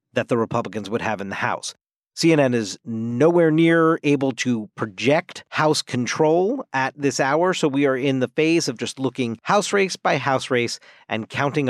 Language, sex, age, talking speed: English, male, 40-59, 185 wpm